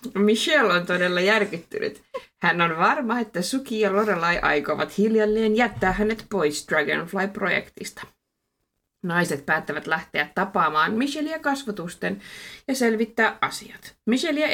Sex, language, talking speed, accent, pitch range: female, Finnish, 110 wpm, native, 170-230 Hz